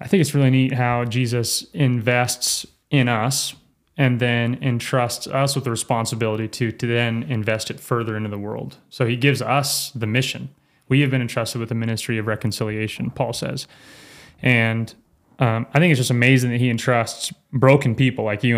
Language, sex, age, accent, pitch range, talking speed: English, male, 20-39, American, 115-135 Hz, 185 wpm